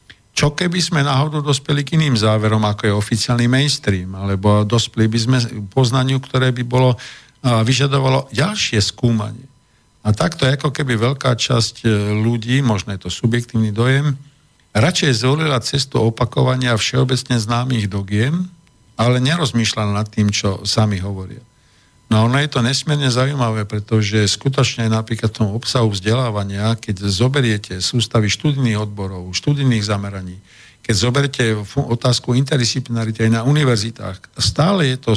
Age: 50-69